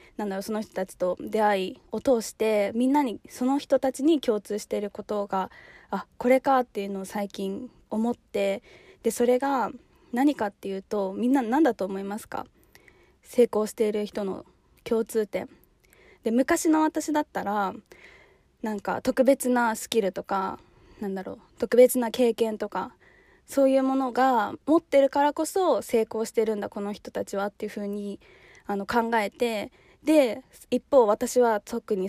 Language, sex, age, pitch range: Japanese, female, 20-39, 205-255 Hz